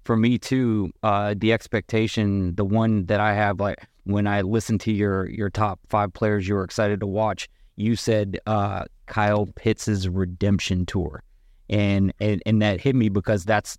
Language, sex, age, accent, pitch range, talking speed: English, male, 30-49, American, 100-115 Hz, 180 wpm